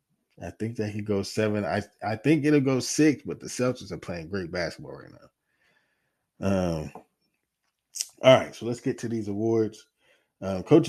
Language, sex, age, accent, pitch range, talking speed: English, male, 20-39, American, 85-110 Hz, 175 wpm